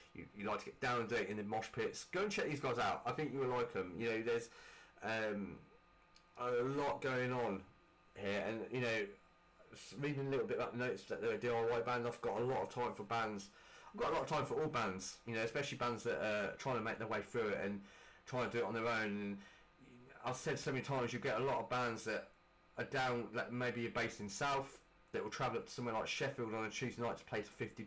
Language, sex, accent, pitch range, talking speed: English, male, British, 110-140 Hz, 265 wpm